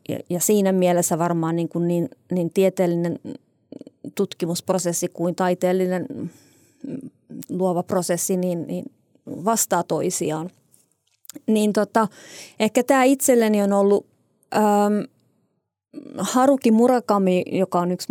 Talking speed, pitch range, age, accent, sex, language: 105 wpm, 170-200 Hz, 30-49, native, female, Finnish